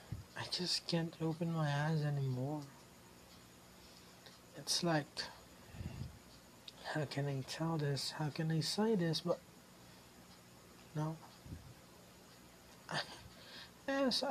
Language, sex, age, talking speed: Filipino, male, 60-79, 90 wpm